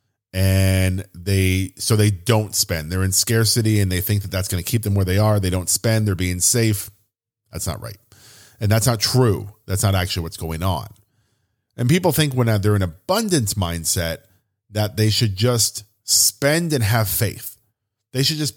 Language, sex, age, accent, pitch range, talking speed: English, male, 40-59, American, 100-115 Hz, 190 wpm